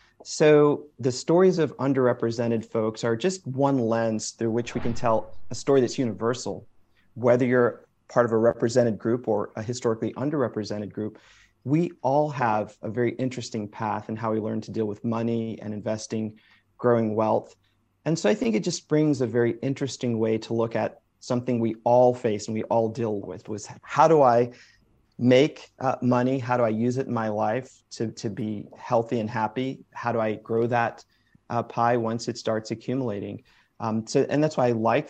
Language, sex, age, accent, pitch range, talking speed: English, male, 40-59, American, 110-130 Hz, 190 wpm